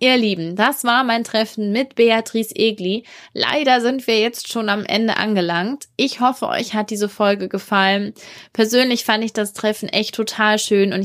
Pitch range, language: 190-235 Hz, German